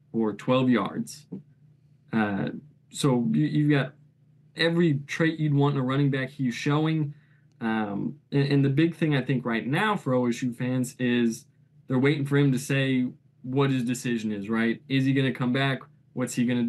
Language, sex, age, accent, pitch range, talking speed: English, male, 20-39, American, 125-150 Hz, 185 wpm